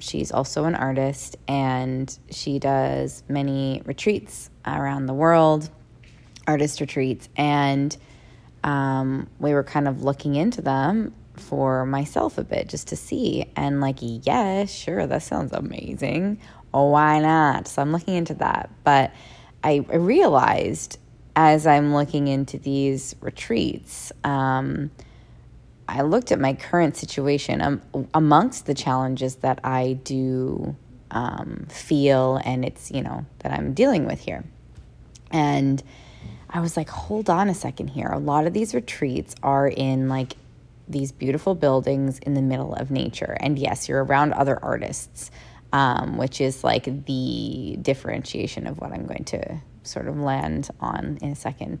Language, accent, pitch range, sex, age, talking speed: English, American, 130-150 Hz, female, 20-39, 150 wpm